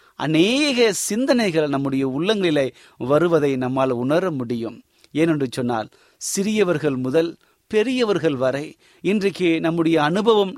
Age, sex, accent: 30-49, male, native